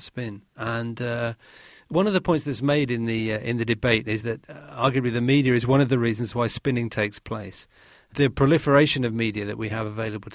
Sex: male